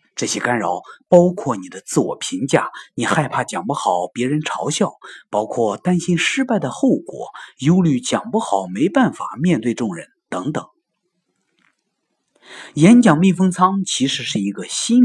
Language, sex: Chinese, male